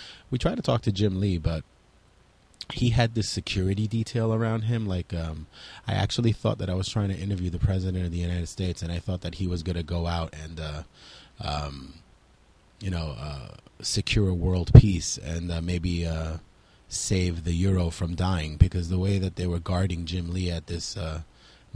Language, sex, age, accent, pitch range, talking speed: English, male, 30-49, American, 85-100 Hz, 200 wpm